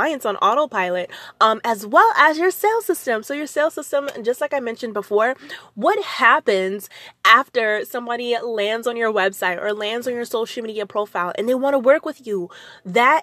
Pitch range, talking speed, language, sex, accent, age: 210-280 Hz, 185 wpm, English, female, American, 20-39